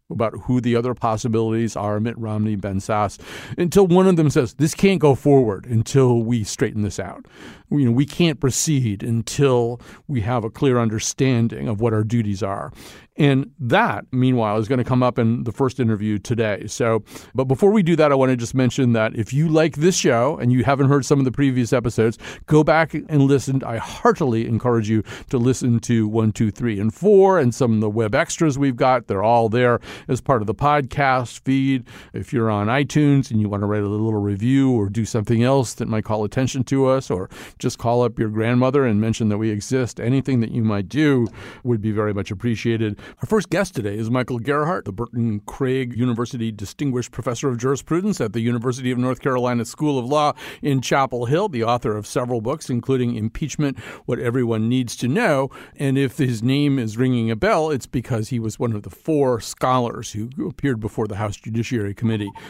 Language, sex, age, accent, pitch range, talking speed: English, male, 50-69, American, 115-140 Hz, 210 wpm